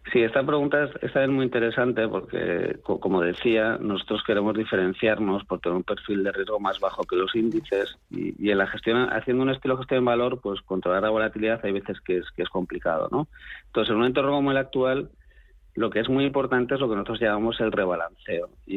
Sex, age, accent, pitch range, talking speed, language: male, 40-59, Spanish, 100-115 Hz, 225 wpm, Spanish